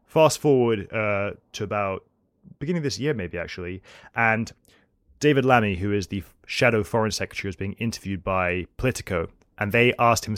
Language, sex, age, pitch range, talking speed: English, male, 20-39, 95-115 Hz, 170 wpm